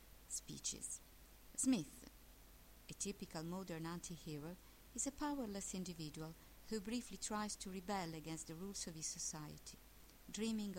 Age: 50-69